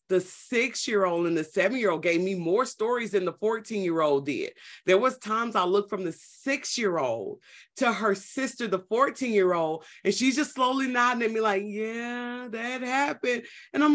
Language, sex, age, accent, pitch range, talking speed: English, female, 30-49, American, 180-240 Hz, 170 wpm